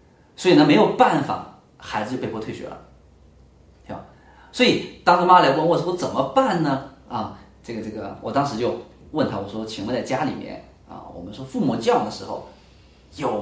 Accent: native